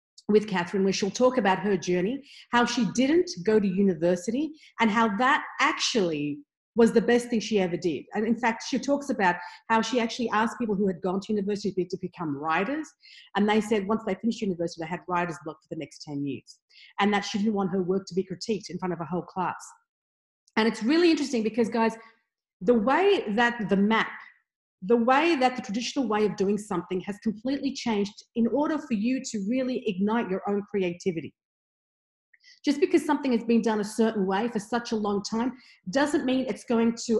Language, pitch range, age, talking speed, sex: English, 195-250 Hz, 40-59, 205 wpm, female